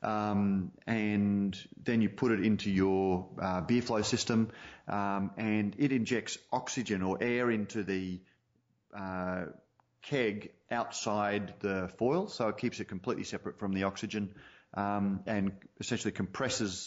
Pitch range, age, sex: 100-120 Hz, 30-49, male